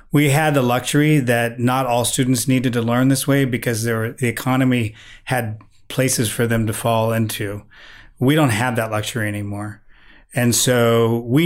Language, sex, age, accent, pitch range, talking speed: English, male, 30-49, American, 110-125 Hz, 170 wpm